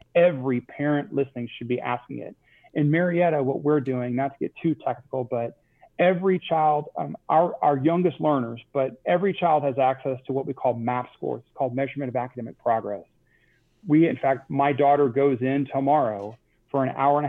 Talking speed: 185 wpm